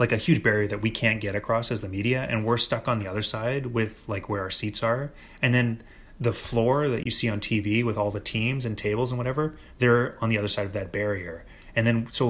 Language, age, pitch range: English, 30-49, 95-120 Hz